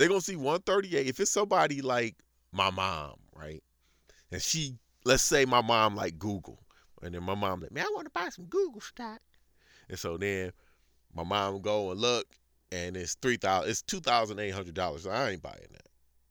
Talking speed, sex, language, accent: 175 wpm, male, English, American